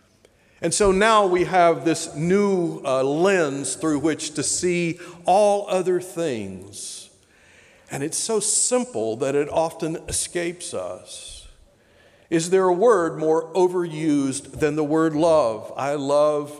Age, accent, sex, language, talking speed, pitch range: 50-69, American, male, English, 135 wpm, 130-170 Hz